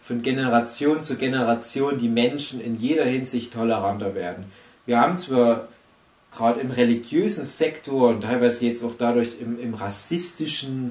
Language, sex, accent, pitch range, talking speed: German, male, German, 110-130 Hz, 145 wpm